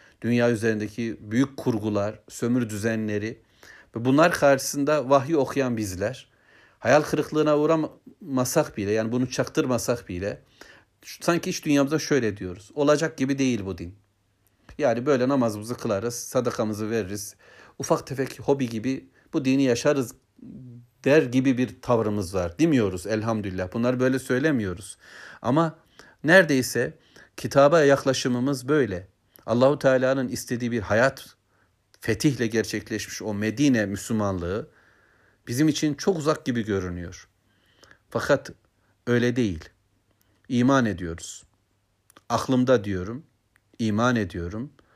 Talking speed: 110 wpm